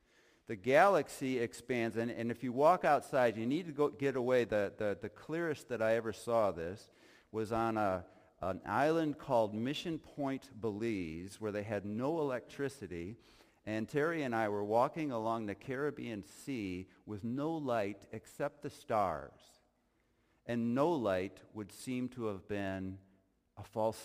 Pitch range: 100-130 Hz